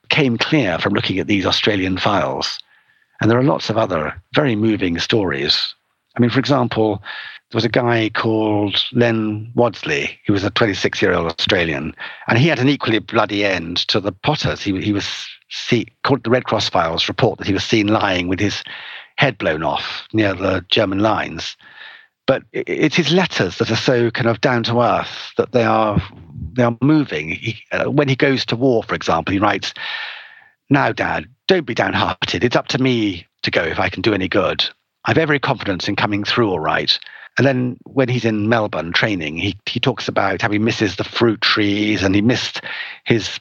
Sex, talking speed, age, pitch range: male, 200 wpm, 50-69, 105-130 Hz